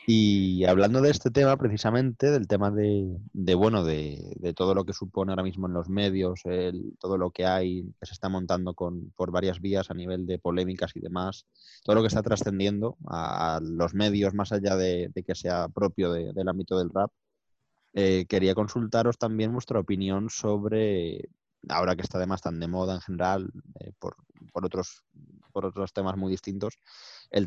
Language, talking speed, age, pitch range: Spanish, 190 wpm, 20-39, 95-115 Hz